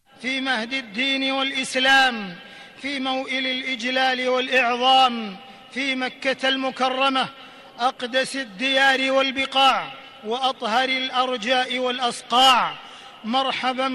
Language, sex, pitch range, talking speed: Arabic, male, 255-270 Hz, 75 wpm